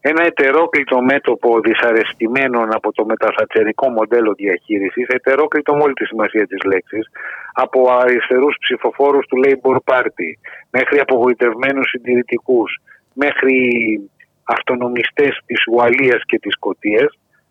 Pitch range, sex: 115-155 Hz, male